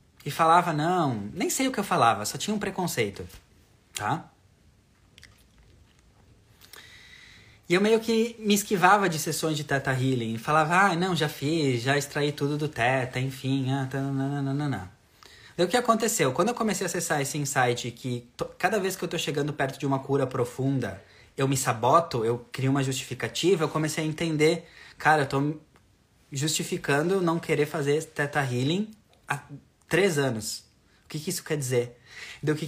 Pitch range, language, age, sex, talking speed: 125-160 Hz, Portuguese, 20-39, male, 180 wpm